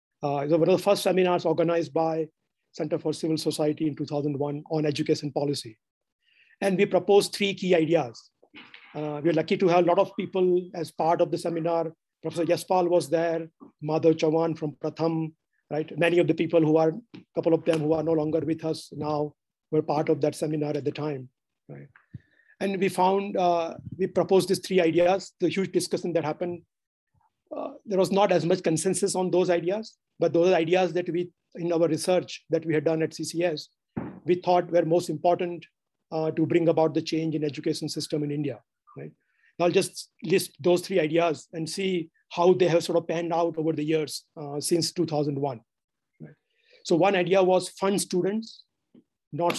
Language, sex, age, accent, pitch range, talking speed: Hindi, male, 50-69, native, 155-180 Hz, 190 wpm